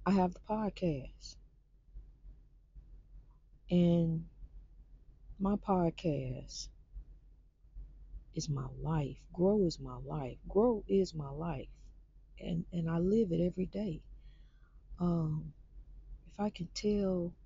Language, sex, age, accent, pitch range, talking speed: English, female, 40-59, American, 155-190 Hz, 105 wpm